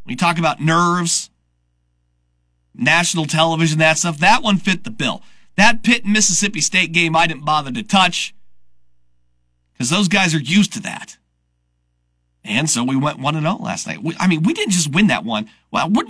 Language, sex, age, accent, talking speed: English, male, 40-59, American, 180 wpm